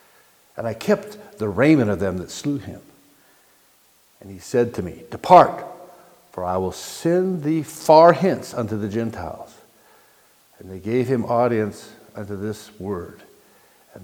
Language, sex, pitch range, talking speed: English, male, 100-140 Hz, 150 wpm